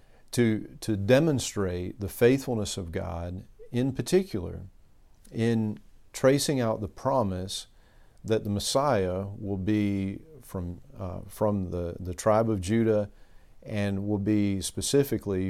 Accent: American